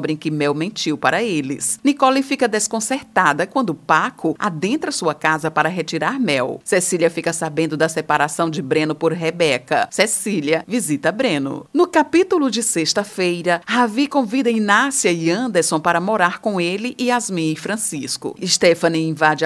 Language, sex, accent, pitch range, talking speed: Portuguese, female, Brazilian, 160-225 Hz, 150 wpm